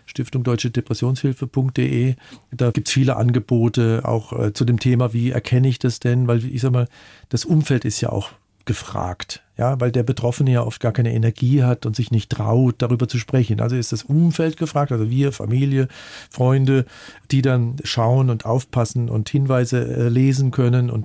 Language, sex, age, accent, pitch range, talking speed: German, male, 50-69, German, 120-140 Hz, 175 wpm